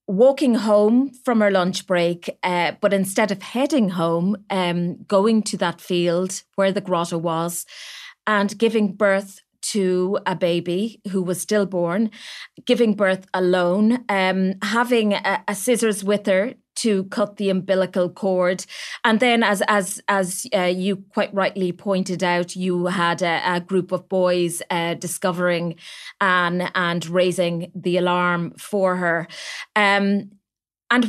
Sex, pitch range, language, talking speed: female, 180-230 Hz, English, 145 wpm